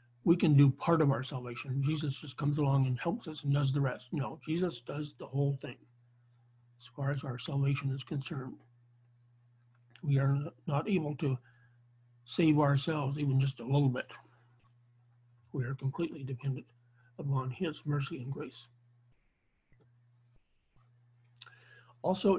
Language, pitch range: English, 120-155 Hz